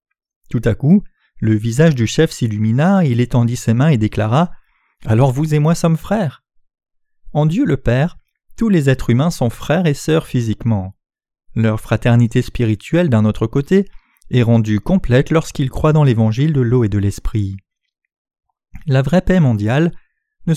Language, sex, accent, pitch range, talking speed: French, male, French, 115-170 Hz, 165 wpm